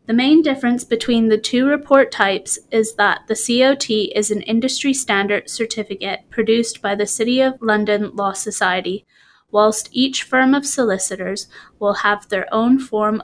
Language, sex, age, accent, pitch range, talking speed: English, female, 20-39, American, 210-245 Hz, 160 wpm